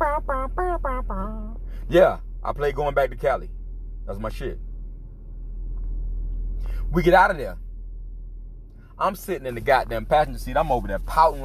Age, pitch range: 30-49, 95-135 Hz